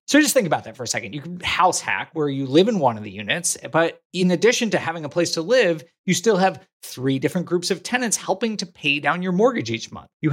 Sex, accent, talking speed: male, American, 265 wpm